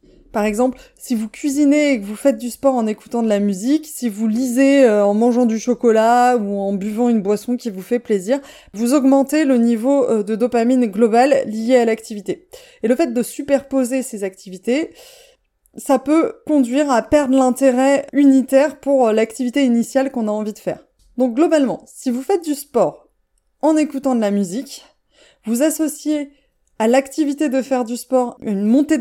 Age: 20-39